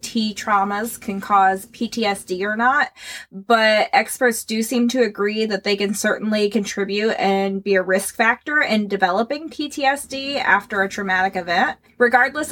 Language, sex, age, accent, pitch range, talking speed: English, female, 20-39, American, 195-240 Hz, 150 wpm